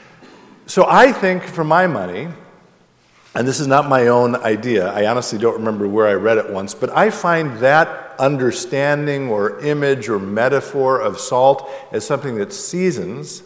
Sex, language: male, English